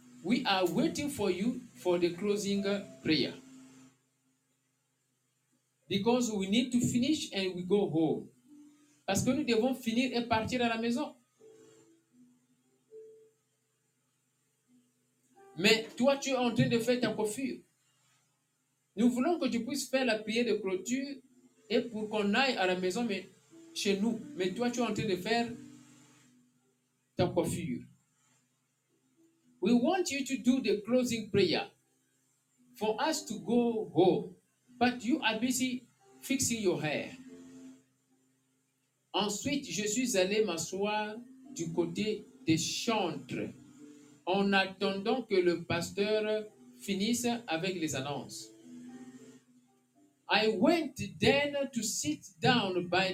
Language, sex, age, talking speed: English, male, 50-69, 130 wpm